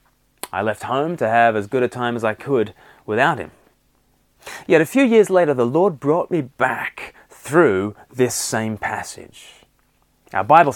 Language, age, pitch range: English, 20-39, 120-150 Hz